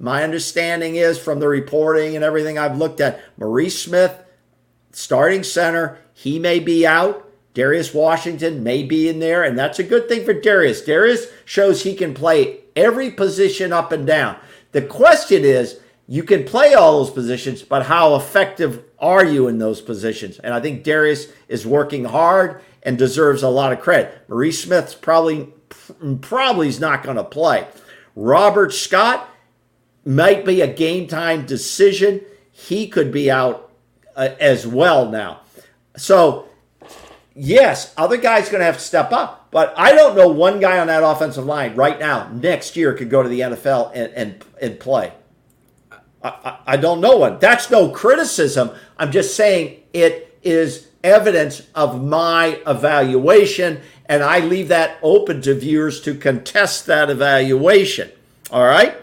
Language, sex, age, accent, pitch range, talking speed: English, male, 50-69, American, 140-185 Hz, 160 wpm